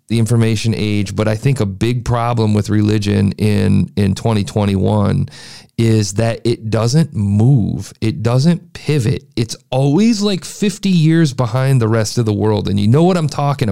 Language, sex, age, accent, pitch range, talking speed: English, male, 40-59, American, 110-155 Hz, 170 wpm